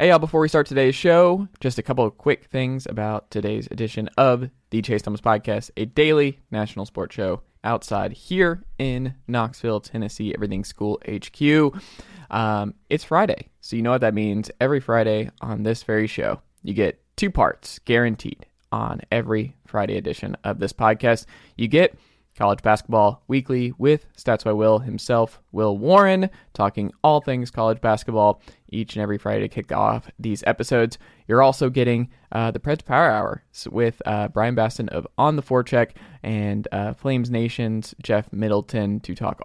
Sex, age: male, 20-39